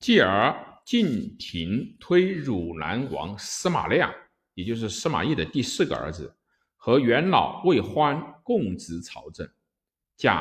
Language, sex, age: Chinese, male, 50-69